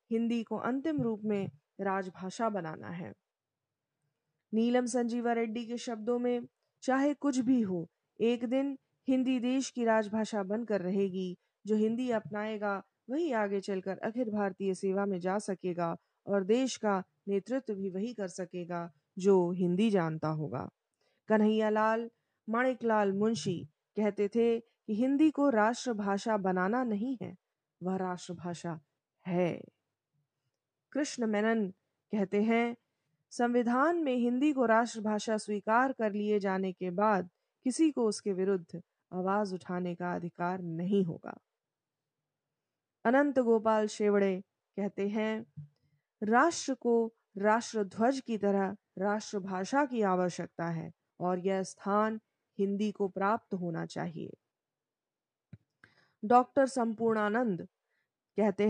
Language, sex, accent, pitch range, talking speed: Hindi, female, native, 185-235 Hz, 120 wpm